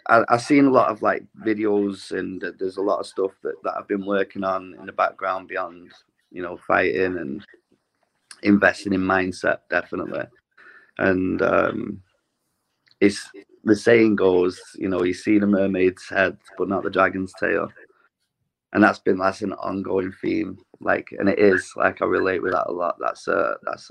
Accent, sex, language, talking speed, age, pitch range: British, male, English, 175 wpm, 30-49, 95-105 Hz